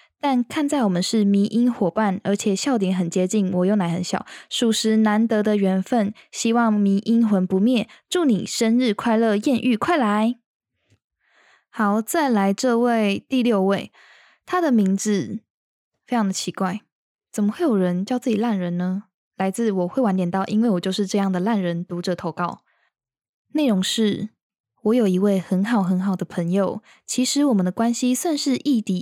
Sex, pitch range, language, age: female, 190-235 Hz, Chinese, 10-29